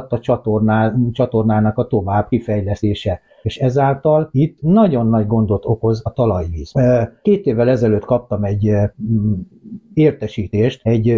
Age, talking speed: 60-79, 115 wpm